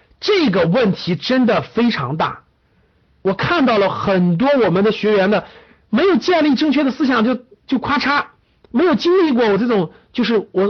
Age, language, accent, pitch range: 50-69, Chinese, native, 195-285 Hz